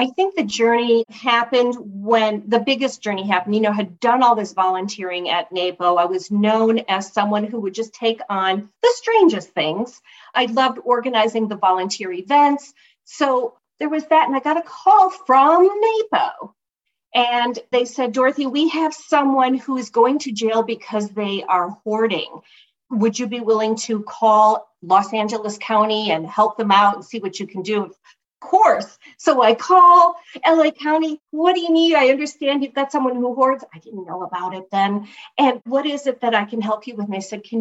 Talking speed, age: 195 wpm, 40-59